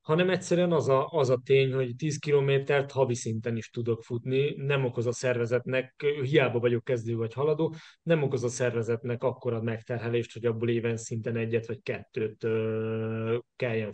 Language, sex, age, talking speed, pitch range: Hungarian, male, 30-49, 170 wpm, 115-135 Hz